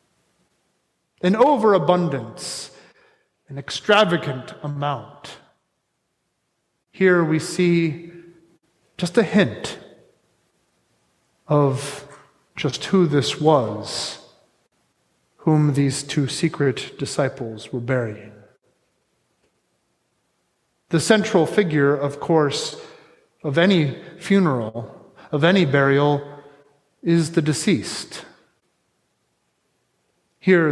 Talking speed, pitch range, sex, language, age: 75 wpm, 145-200 Hz, male, English, 30-49